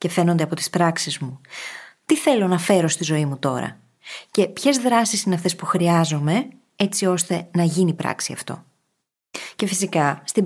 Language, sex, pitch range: Greek, female, 165-235 Hz